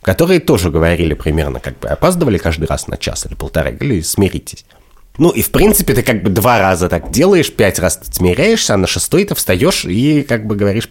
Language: Russian